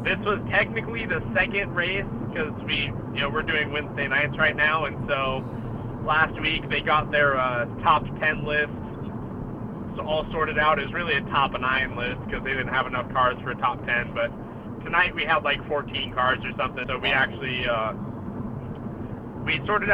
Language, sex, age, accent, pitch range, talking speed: English, male, 30-49, American, 120-155 Hz, 185 wpm